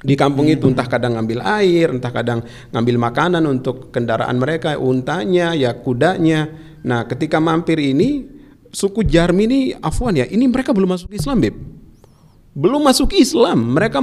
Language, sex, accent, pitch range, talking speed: Indonesian, male, native, 125-195 Hz, 145 wpm